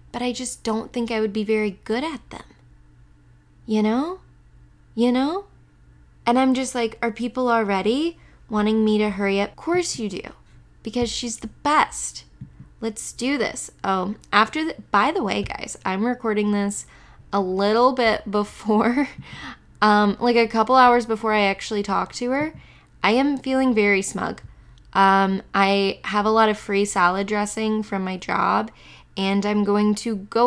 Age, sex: 10-29, female